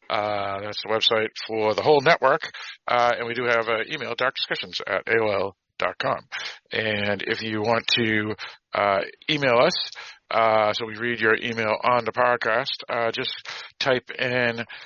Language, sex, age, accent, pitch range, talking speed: English, male, 50-69, American, 110-130 Hz, 160 wpm